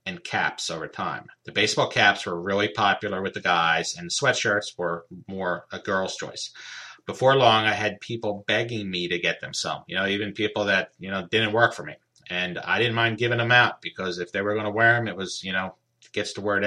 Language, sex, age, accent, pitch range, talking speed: English, male, 30-49, American, 95-125 Hz, 235 wpm